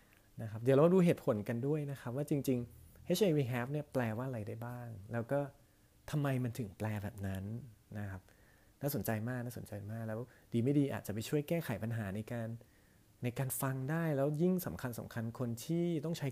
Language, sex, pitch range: Thai, male, 110-140 Hz